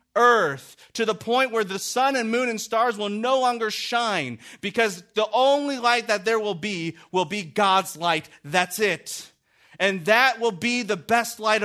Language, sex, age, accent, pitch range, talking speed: English, male, 40-59, American, 160-235 Hz, 185 wpm